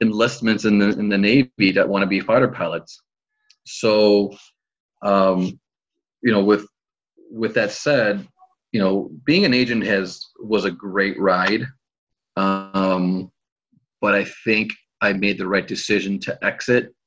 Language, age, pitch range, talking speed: English, 30-49, 95-115 Hz, 145 wpm